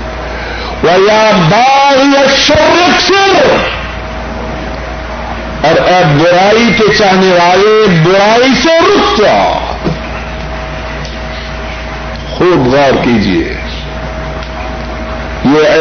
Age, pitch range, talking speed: 60-79, 150-225 Hz, 55 wpm